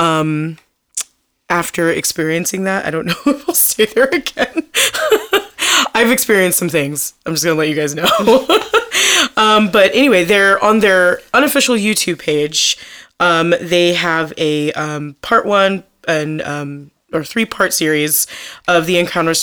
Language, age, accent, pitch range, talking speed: English, 20-39, American, 155-200 Hz, 150 wpm